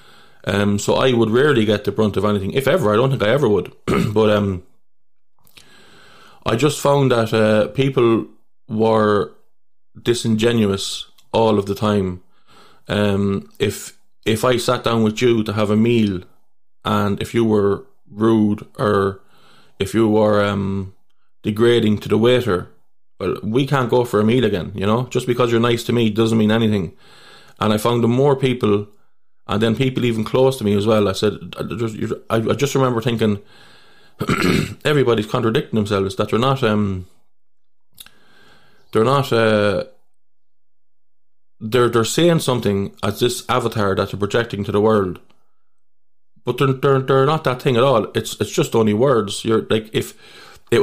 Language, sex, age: English, male, 20-39